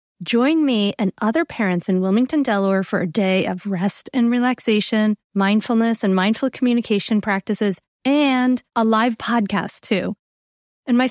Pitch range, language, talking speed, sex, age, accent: 190-245 Hz, English, 145 wpm, female, 30-49, American